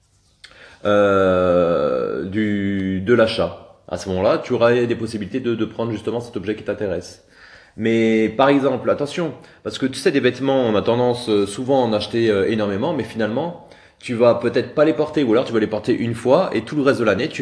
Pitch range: 105-130 Hz